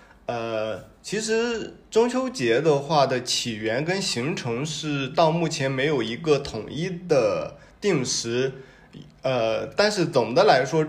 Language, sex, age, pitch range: Chinese, male, 20-39, 130-175 Hz